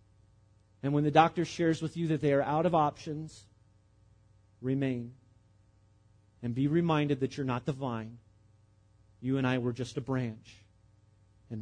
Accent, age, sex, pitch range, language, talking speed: American, 40-59, male, 110-145 Hz, English, 155 wpm